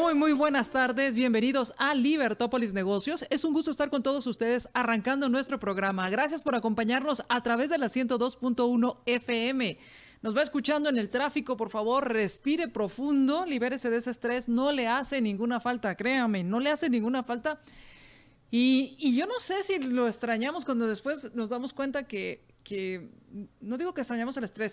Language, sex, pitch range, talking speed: Spanish, female, 215-265 Hz, 175 wpm